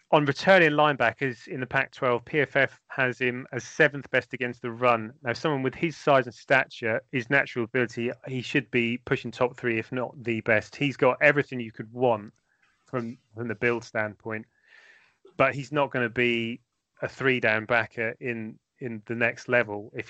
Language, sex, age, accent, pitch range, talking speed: English, male, 30-49, British, 115-140 Hz, 180 wpm